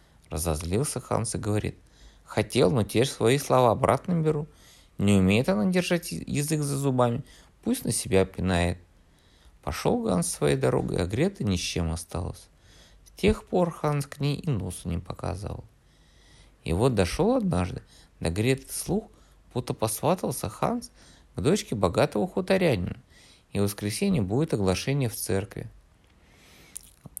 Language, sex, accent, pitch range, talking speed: Russian, male, native, 90-140 Hz, 145 wpm